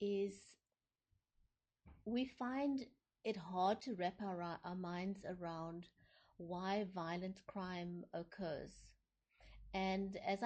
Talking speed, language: 100 wpm, English